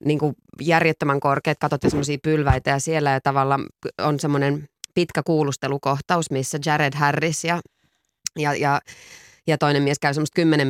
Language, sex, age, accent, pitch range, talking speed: Finnish, female, 20-39, native, 140-170 Hz, 135 wpm